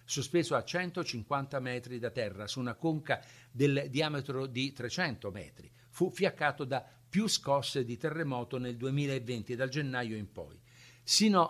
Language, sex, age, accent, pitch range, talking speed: Italian, male, 50-69, native, 115-145 Hz, 145 wpm